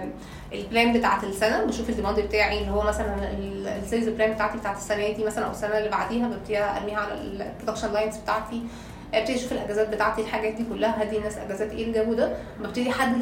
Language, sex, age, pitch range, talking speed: Arabic, female, 20-39, 210-235 Hz, 185 wpm